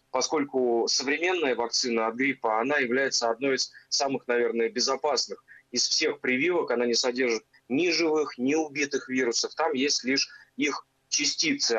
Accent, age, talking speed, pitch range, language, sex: native, 20-39, 145 wpm, 120-150 Hz, Russian, male